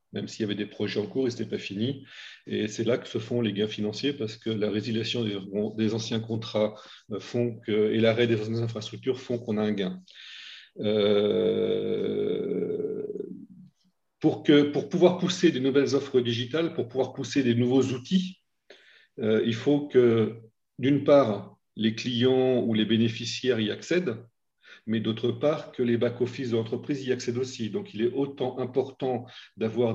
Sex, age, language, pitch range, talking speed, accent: male, 40-59, French, 110-135 Hz, 170 wpm, French